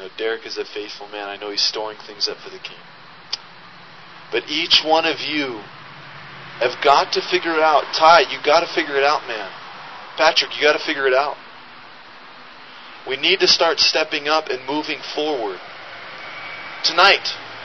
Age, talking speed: 30-49, 170 wpm